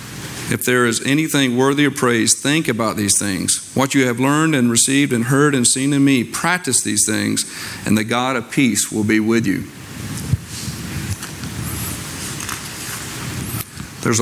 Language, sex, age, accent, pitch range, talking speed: English, male, 50-69, American, 110-130 Hz, 150 wpm